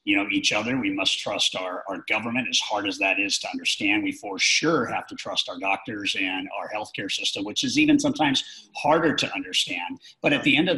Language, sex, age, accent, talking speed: English, male, 50-69, American, 230 wpm